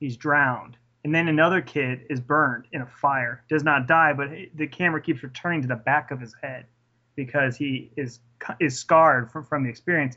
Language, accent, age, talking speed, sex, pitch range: English, American, 30-49, 200 wpm, male, 125-155 Hz